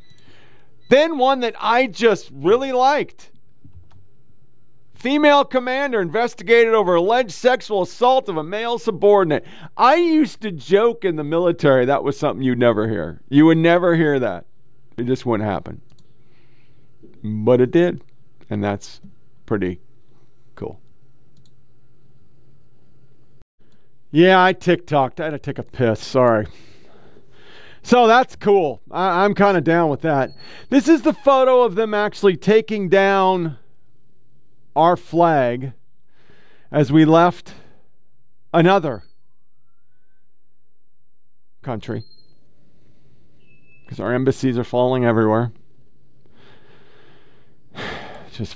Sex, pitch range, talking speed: male, 125-200 Hz, 110 wpm